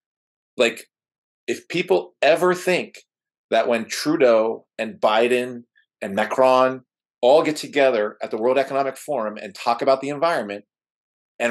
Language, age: English, 50-69